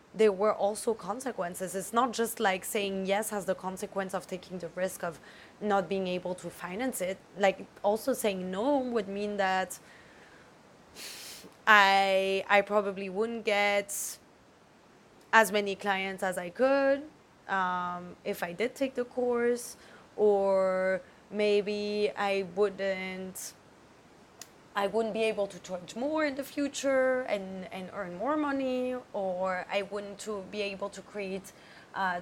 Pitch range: 185-220 Hz